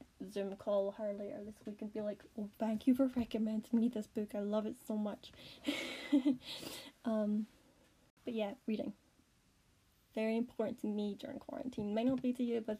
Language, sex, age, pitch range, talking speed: English, female, 10-29, 210-245 Hz, 175 wpm